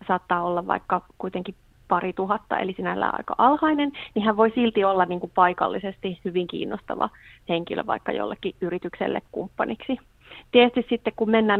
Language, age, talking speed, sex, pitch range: Finnish, 30-49, 145 wpm, female, 180-205 Hz